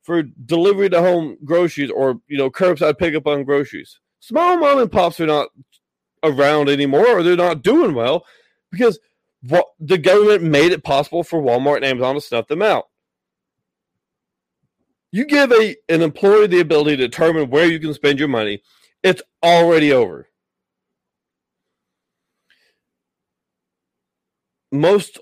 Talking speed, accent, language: 140 wpm, American, English